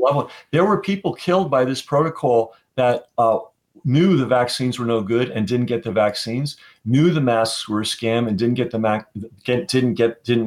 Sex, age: male, 40-59